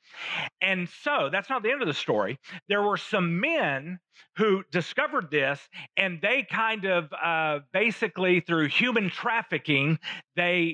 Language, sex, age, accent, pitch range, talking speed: English, male, 40-59, American, 135-175 Hz, 145 wpm